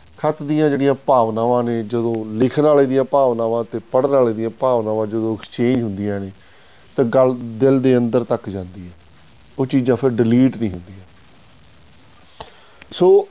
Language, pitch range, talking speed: Punjabi, 110-140 Hz, 155 wpm